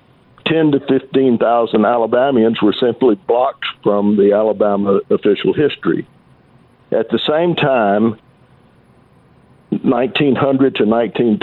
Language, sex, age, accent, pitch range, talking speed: English, male, 60-79, American, 110-140 Hz, 115 wpm